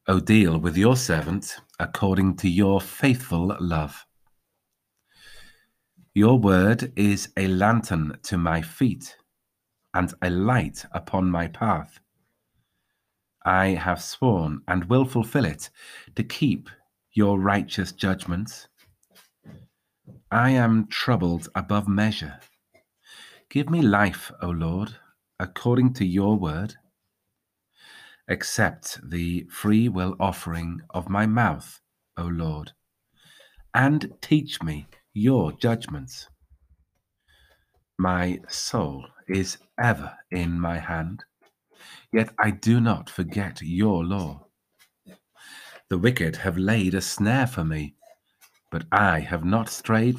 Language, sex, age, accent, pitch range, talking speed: English, male, 40-59, British, 85-110 Hz, 110 wpm